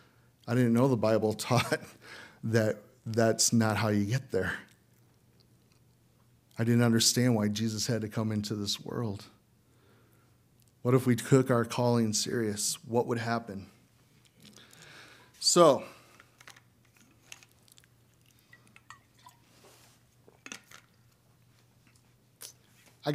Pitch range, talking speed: 110-130 Hz, 95 wpm